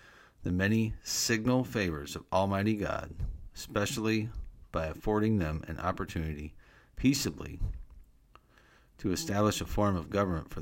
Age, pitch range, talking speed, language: 50-69, 85-105 Hz, 120 wpm, English